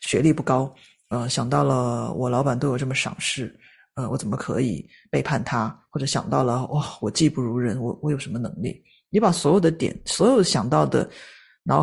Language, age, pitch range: Chinese, 30-49, 135-180 Hz